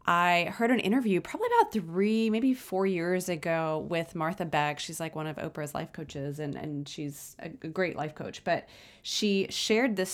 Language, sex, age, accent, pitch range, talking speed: English, female, 20-39, American, 175-220 Hz, 190 wpm